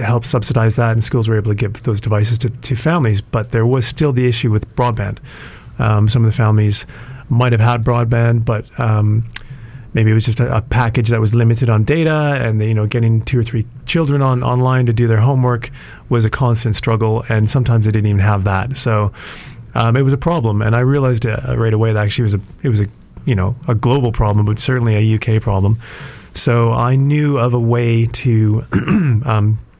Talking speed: 220 wpm